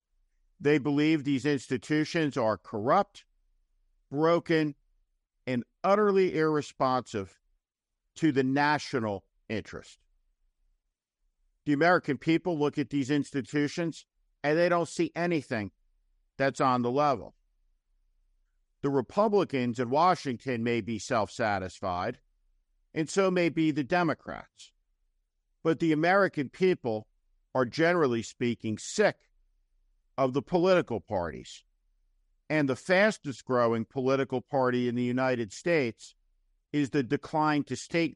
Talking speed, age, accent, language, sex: 105 wpm, 50-69, American, English, male